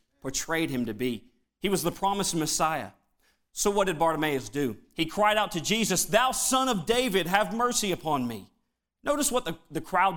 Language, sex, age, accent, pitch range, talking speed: English, male, 40-59, American, 150-225 Hz, 190 wpm